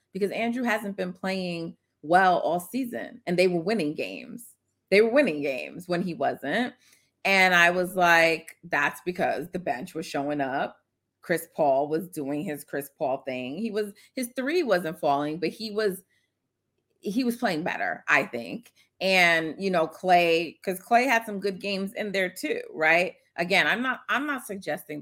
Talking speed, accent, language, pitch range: 175 wpm, American, English, 145-200 Hz